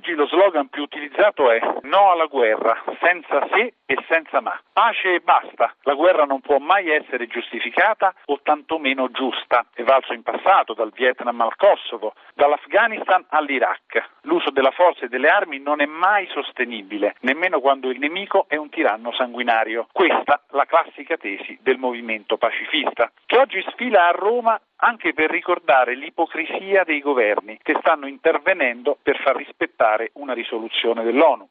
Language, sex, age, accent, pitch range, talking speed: Italian, male, 50-69, native, 125-180 Hz, 155 wpm